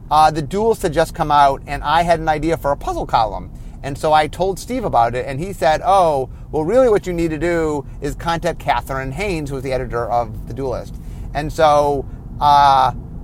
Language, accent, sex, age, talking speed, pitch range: English, American, male, 30-49, 220 wpm, 135-190 Hz